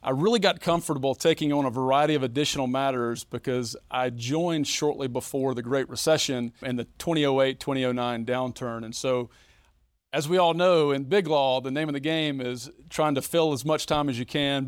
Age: 40-59